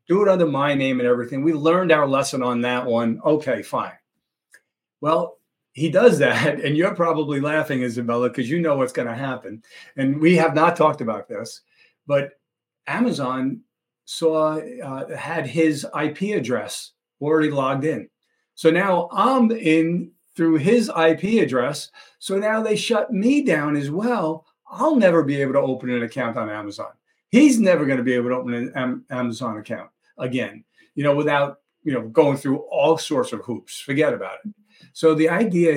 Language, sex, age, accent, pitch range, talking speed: English, male, 40-59, American, 130-165 Hz, 175 wpm